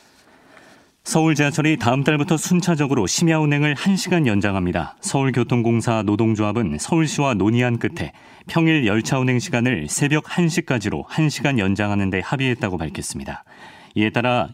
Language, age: Korean, 40-59